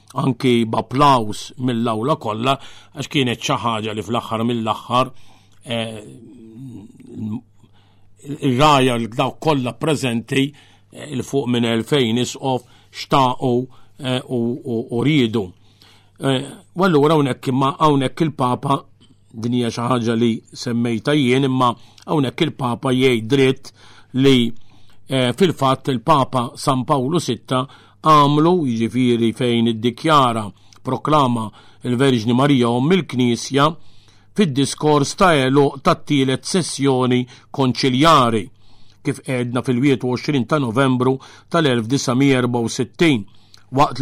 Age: 50-69